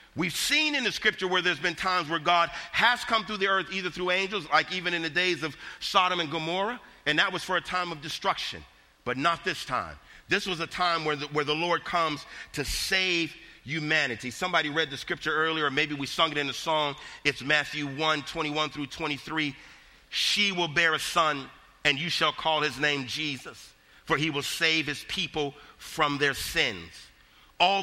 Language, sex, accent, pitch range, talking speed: English, male, American, 140-175 Hz, 205 wpm